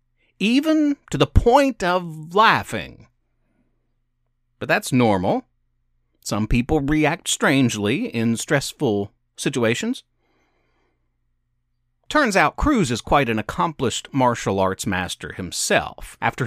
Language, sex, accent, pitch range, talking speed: English, male, American, 115-150 Hz, 100 wpm